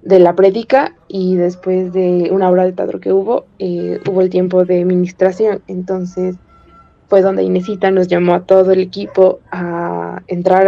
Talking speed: 175 wpm